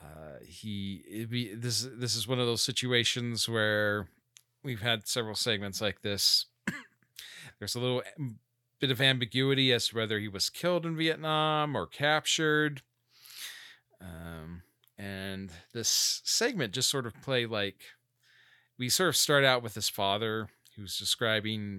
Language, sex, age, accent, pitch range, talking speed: English, male, 40-59, American, 100-125 Hz, 140 wpm